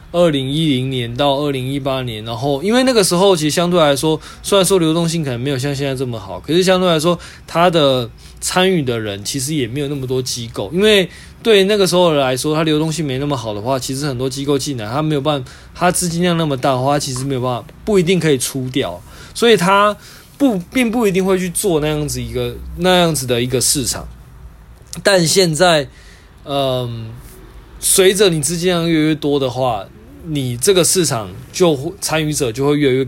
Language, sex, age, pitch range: Chinese, male, 20-39, 130-170 Hz